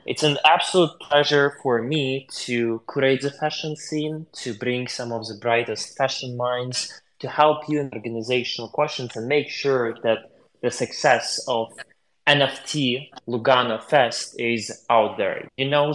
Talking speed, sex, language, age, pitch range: 150 wpm, male, English, 20-39, 115-145 Hz